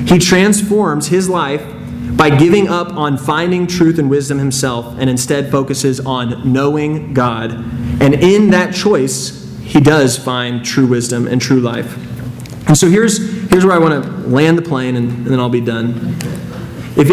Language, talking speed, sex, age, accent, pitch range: English, 170 wpm, male, 30-49, American, 125-165 Hz